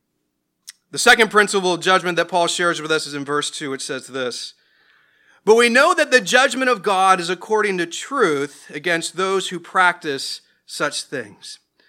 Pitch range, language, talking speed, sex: 180-245 Hz, English, 175 wpm, male